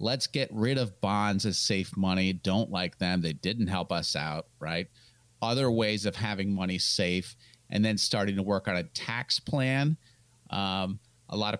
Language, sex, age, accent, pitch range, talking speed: English, male, 40-59, American, 100-125 Hz, 185 wpm